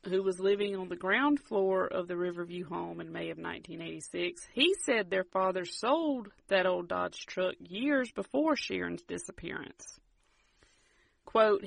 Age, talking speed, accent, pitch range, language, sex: 40-59, 150 wpm, American, 175-245 Hz, English, female